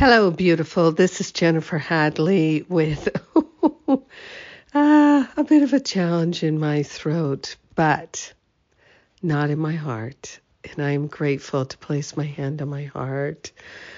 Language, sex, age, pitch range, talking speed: English, female, 60-79, 145-175 Hz, 135 wpm